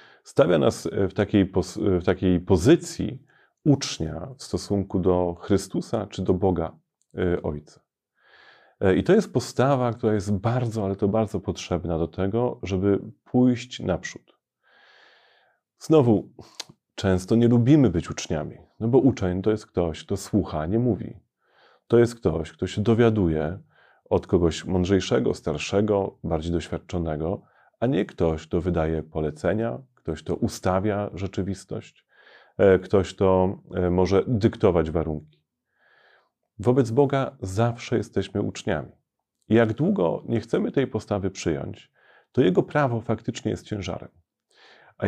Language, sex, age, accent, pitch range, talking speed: Polish, male, 30-49, native, 90-115 Hz, 125 wpm